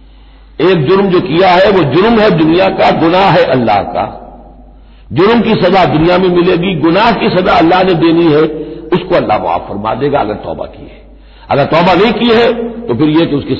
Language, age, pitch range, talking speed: Hindi, 50-69, 155-195 Hz, 205 wpm